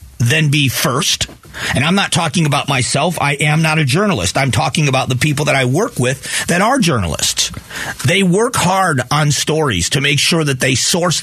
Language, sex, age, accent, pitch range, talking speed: English, male, 40-59, American, 130-170 Hz, 200 wpm